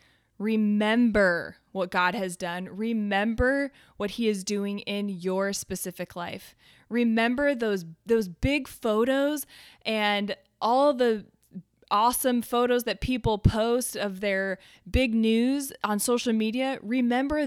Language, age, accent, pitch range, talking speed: English, 20-39, American, 195-240 Hz, 120 wpm